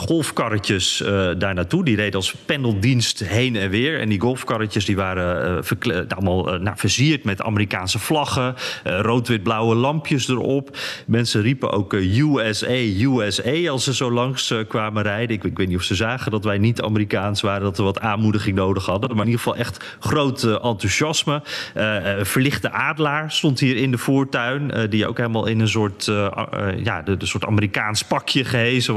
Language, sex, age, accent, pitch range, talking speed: Dutch, male, 30-49, Dutch, 105-135 Hz, 190 wpm